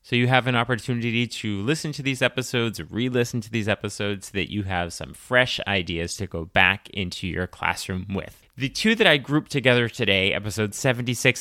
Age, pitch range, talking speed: 30-49, 100-120 Hz, 195 wpm